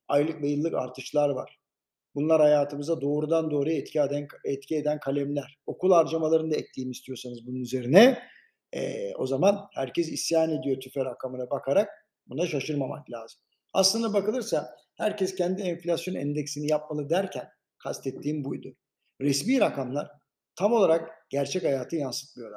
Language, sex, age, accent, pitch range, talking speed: Turkish, male, 50-69, native, 145-195 Hz, 130 wpm